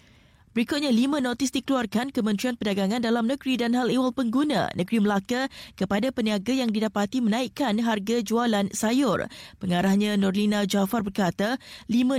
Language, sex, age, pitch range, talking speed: Malay, female, 20-39, 200-235 Hz, 135 wpm